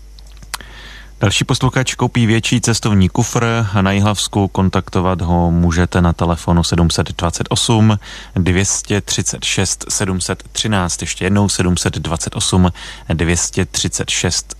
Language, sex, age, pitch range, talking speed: Czech, male, 30-49, 90-105 Hz, 85 wpm